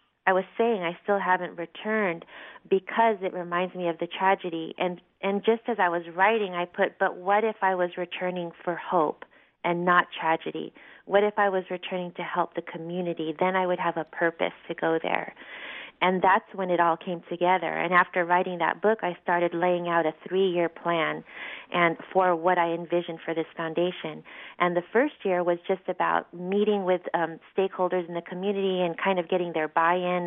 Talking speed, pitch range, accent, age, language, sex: 195 wpm, 165-185 Hz, American, 30-49, English, female